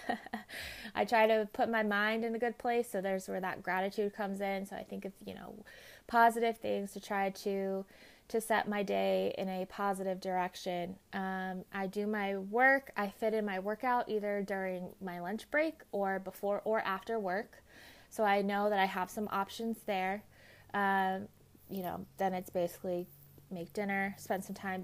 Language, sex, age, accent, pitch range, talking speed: English, female, 20-39, American, 185-220 Hz, 185 wpm